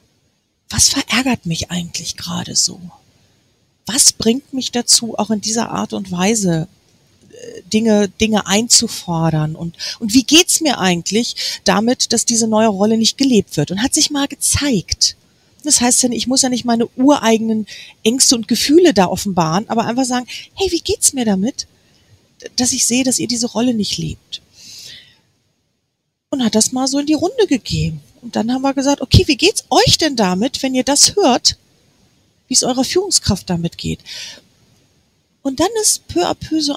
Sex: female